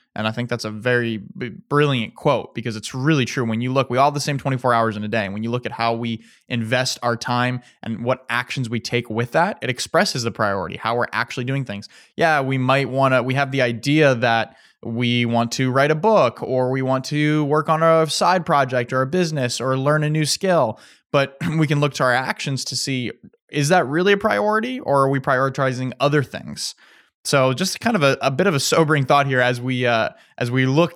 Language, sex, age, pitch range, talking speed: English, male, 20-39, 115-135 Hz, 235 wpm